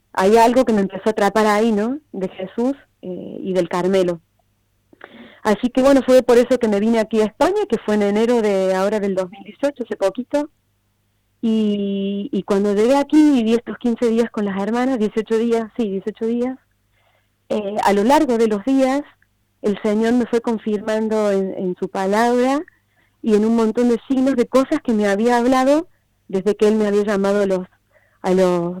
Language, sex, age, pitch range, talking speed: Spanish, female, 30-49, 190-235 Hz, 190 wpm